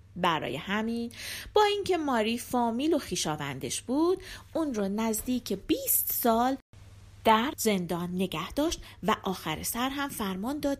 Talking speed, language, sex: 135 wpm, Persian, female